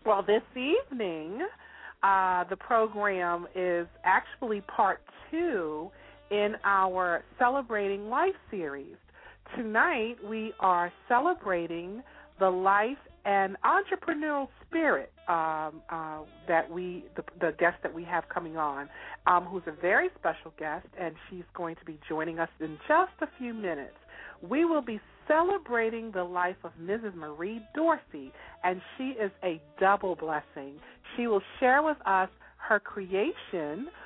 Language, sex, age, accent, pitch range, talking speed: English, female, 40-59, American, 170-235 Hz, 135 wpm